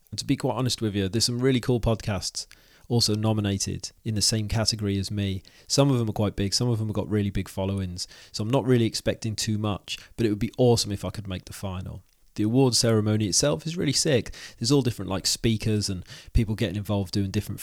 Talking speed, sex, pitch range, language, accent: 240 wpm, male, 100-115 Hz, English, British